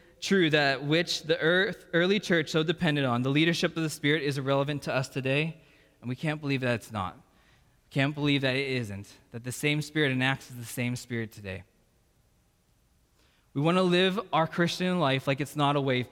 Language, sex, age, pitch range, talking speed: English, male, 20-39, 130-175 Hz, 195 wpm